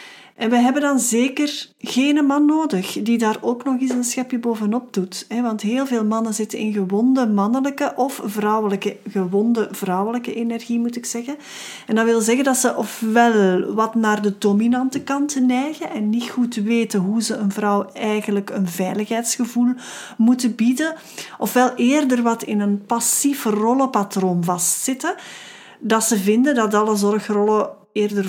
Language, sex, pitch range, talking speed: Dutch, female, 200-245 Hz, 155 wpm